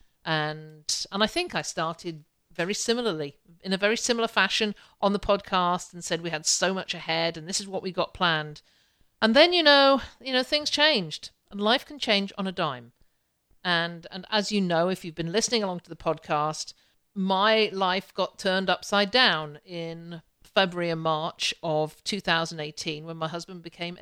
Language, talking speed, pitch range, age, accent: English, 185 wpm, 170-230 Hz, 50-69, British